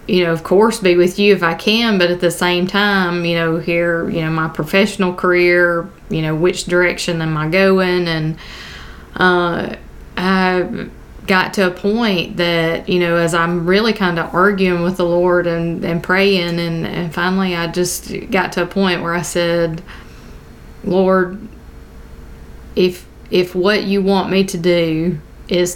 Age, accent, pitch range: 20-39, American, 165-185 Hz